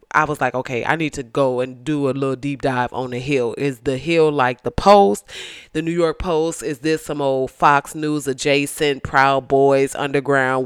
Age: 20-39